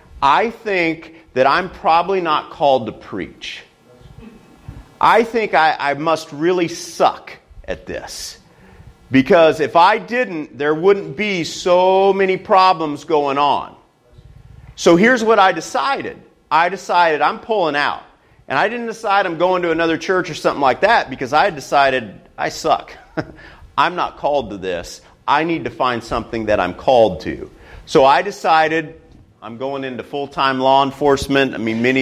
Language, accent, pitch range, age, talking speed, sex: English, American, 135-205 Hz, 40-59, 155 wpm, male